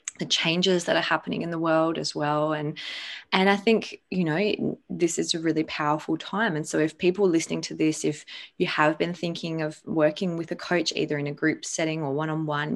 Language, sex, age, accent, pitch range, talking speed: English, female, 20-39, Australian, 150-200 Hz, 215 wpm